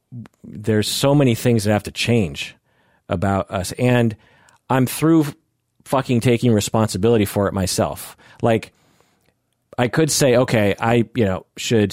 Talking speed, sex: 140 wpm, male